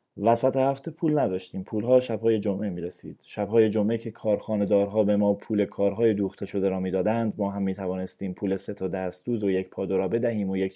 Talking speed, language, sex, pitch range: 185 wpm, Persian, male, 100-140 Hz